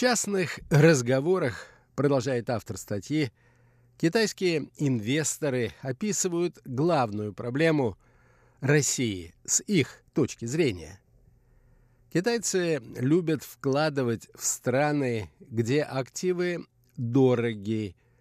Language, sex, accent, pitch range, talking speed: Russian, male, native, 120-150 Hz, 80 wpm